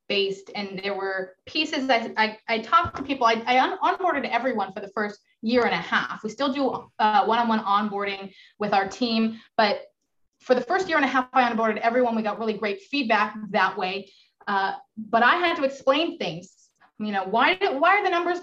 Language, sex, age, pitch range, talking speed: English, female, 20-39, 215-280 Hz, 210 wpm